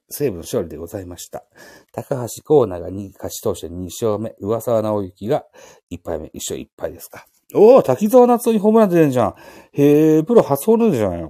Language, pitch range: Japanese, 95-145 Hz